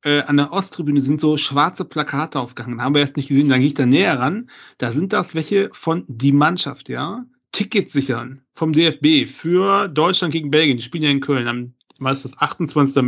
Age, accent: 40-59, German